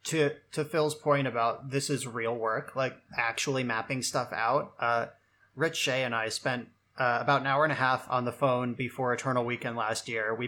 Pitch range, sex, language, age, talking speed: 115-135 Hz, male, English, 20-39, 205 wpm